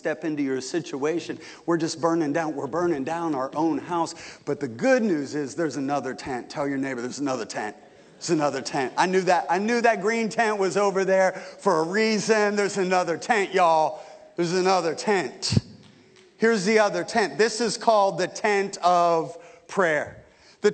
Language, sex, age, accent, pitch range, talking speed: English, male, 40-59, American, 195-250 Hz, 185 wpm